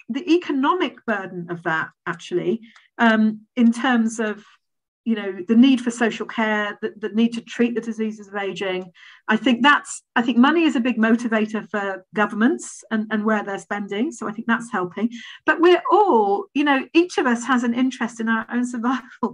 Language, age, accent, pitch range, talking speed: English, 40-59, British, 215-265 Hz, 195 wpm